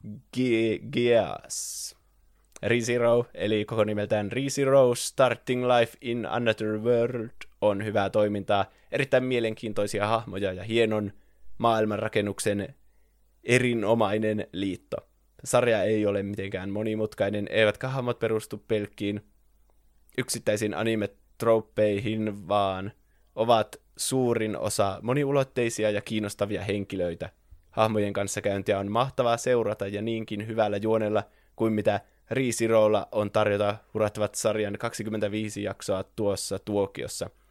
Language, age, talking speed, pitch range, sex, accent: Finnish, 20-39, 100 wpm, 100-115 Hz, male, native